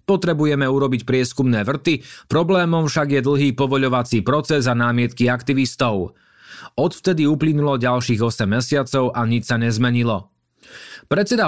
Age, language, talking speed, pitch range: 30-49, Slovak, 120 wpm, 120-155 Hz